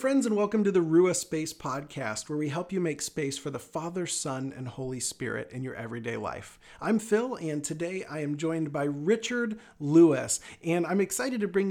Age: 40-59